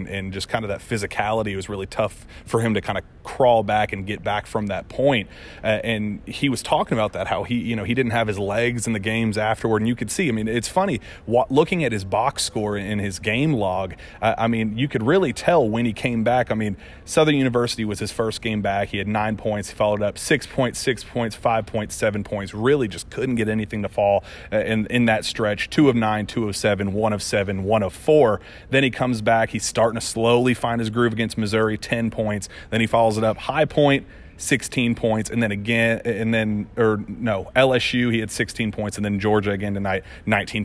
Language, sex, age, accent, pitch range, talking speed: English, male, 30-49, American, 105-115 Hz, 240 wpm